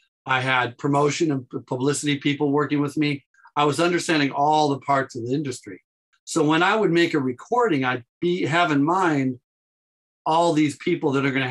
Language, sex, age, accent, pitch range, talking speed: English, male, 40-59, American, 130-155 Hz, 180 wpm